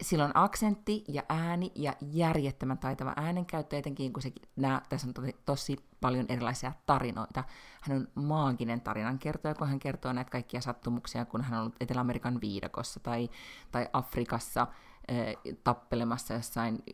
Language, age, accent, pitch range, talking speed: Finnish, 30-49, native, 120-145 Hz, 140 wpm